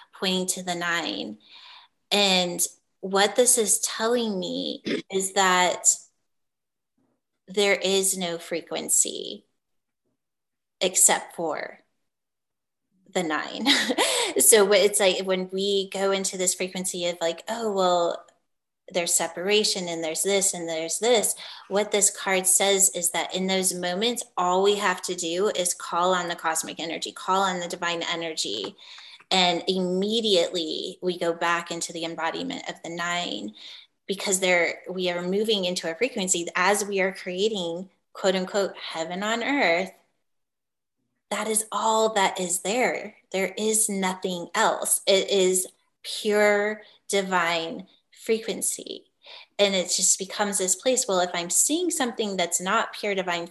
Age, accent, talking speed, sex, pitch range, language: 30-49, American, 140 wpm, female, 180-210 Hz, English